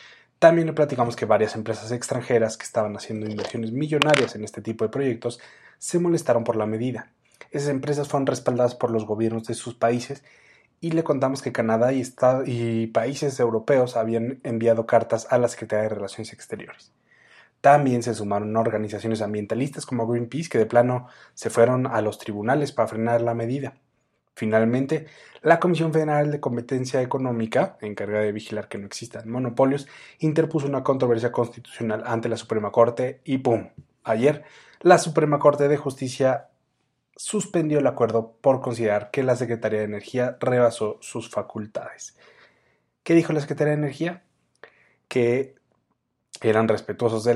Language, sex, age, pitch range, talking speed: Spanish, male, 20-39, 115-140 Hz, 155 wpm